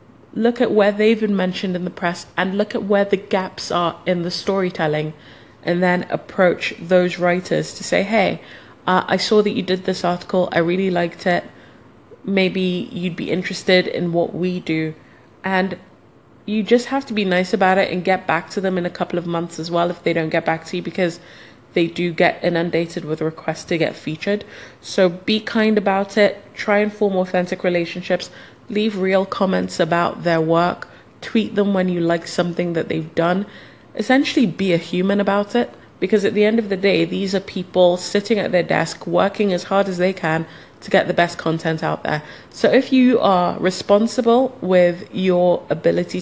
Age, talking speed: 20-39, 195 wpm